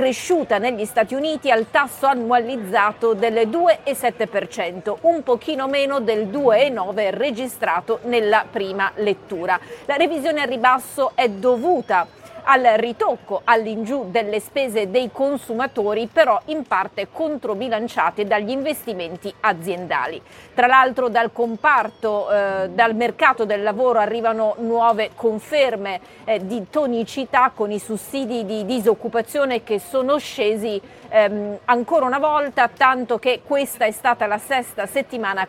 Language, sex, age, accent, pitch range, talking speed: Italian, female, 40-59, native, 210-265 Hz, 125 wpm